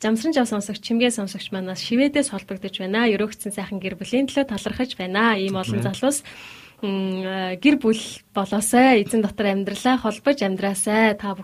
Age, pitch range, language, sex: 20-39, 190-230 Hz, Korean, female